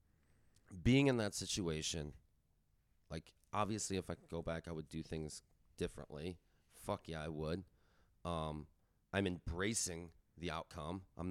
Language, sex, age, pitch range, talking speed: English, male, 30-49, 85-110 Hz, 140 wpm